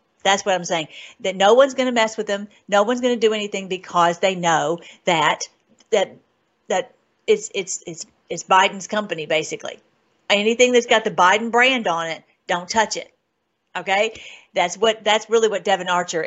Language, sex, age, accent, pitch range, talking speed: English, female, 50-69, American, 190-235 Hz, 185 wpm